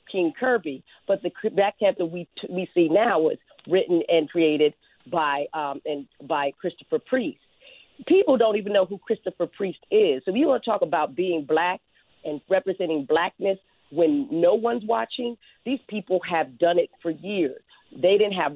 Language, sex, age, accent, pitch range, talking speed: English, female, 40-59, American, 160-205 Hz, 180 wpm